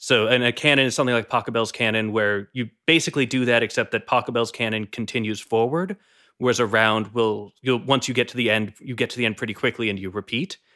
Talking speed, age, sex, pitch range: 225 wpm, 20-39, male, 115-145 Hz